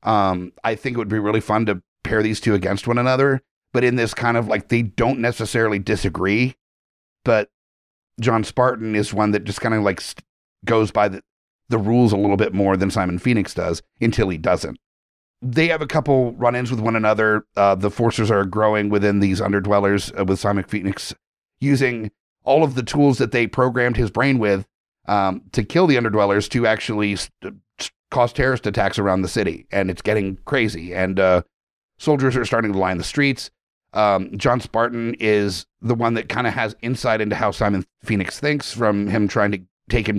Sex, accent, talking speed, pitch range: male, American, 200 wpm, 100-125 Hz